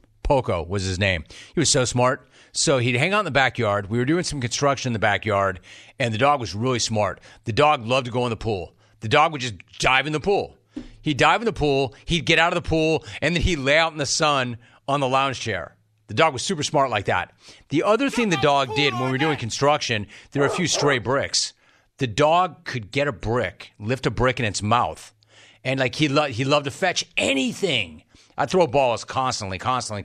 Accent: American